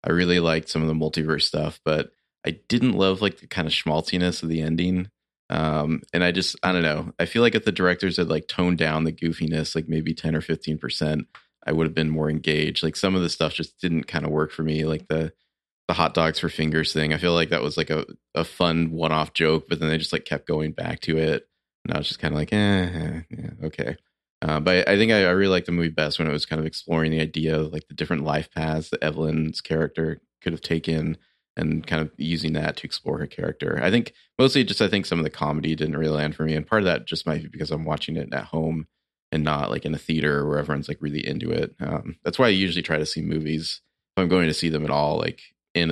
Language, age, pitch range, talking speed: English, 20-39, 75-85 Hz, 260 wpm